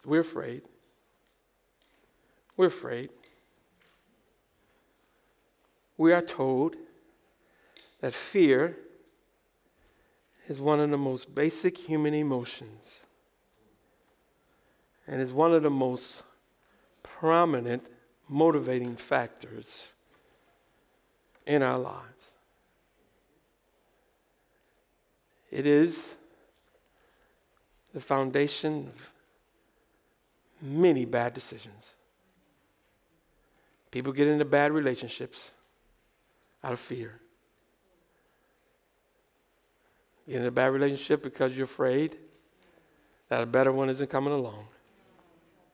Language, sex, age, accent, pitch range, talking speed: English, male, 60-79, American, 130-170 Hz, 75 wpm